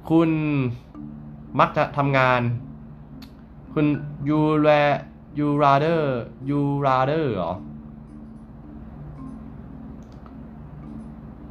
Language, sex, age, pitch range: Thai, male, 10-29, 115-150 Hz